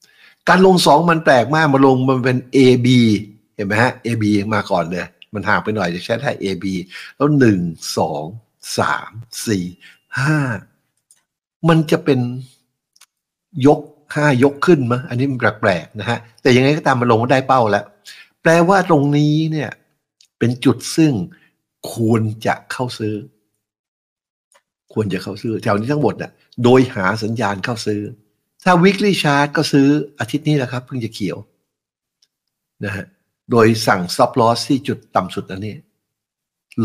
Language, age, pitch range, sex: Thai, 60-79, 105-145 Hz, male